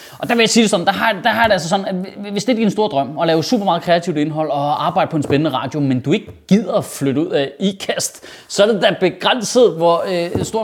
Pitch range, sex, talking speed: 155-220 Hz, male, 290 wpm